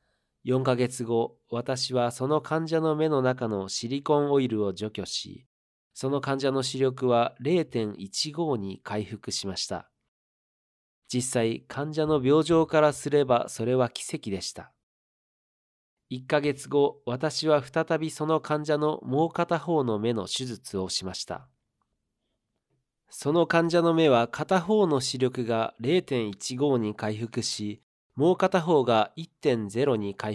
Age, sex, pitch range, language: 40-59, male, 115-150 Hz, Japanese